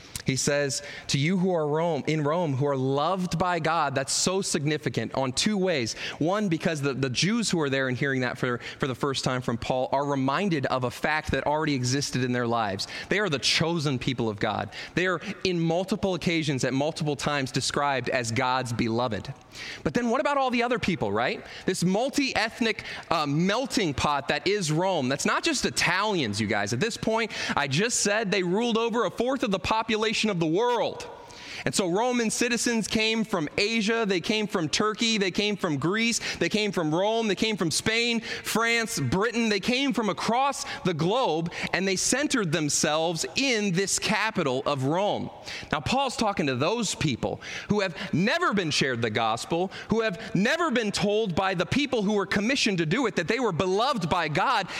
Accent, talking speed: American, 195 wpm